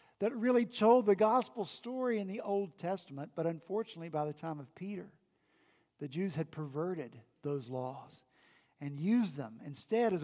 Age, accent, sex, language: 50-69, American, male, English